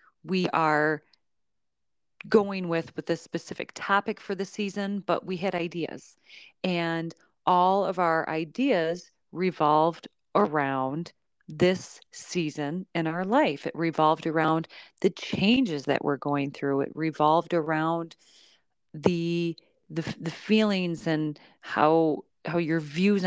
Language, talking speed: English, 125 wpm